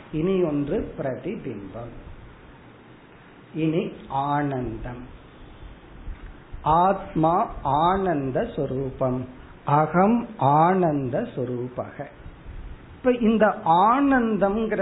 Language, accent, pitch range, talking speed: Tamil, native, 145-195 Hz, 55 wpm